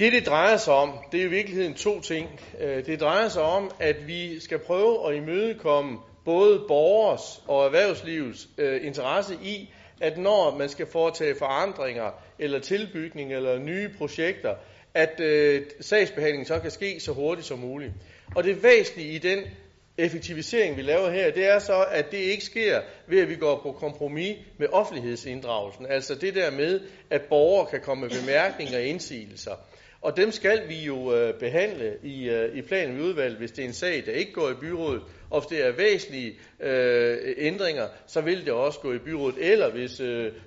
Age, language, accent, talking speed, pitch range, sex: 40-59, Danish, native, 180 wpm, 140-225 Hz, male